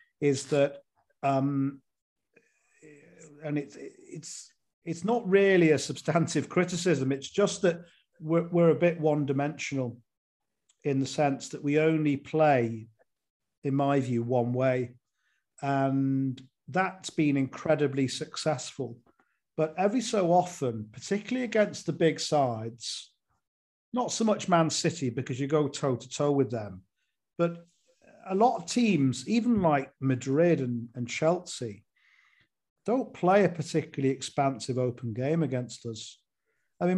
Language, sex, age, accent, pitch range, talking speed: English, male, 40-59, British, 130-165 Hz, 135 wpm